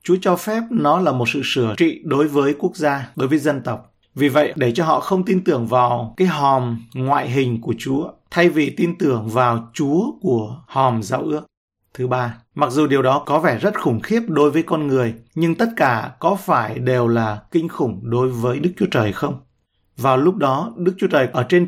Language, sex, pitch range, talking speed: Vietnamese, male, 120-165 Hz, 220 wpm